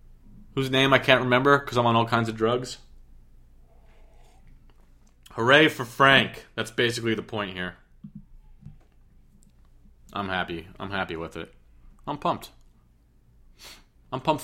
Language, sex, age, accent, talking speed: English, male, 30-49, American, 125 wpm